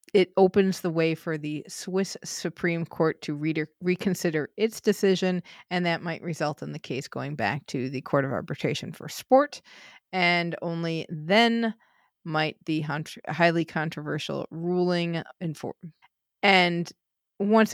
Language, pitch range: English, 155-190 Hz